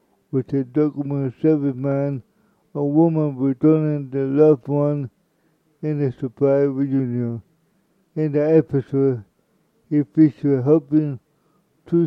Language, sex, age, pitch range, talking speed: English, male, 60-79, 135-155 Hz, 110 wpm